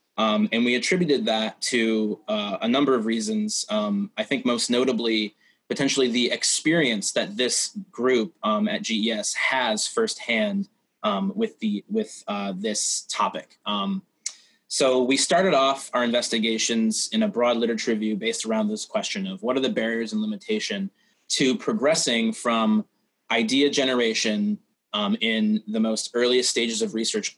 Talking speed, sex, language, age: 150 wpm, male, English, 20-39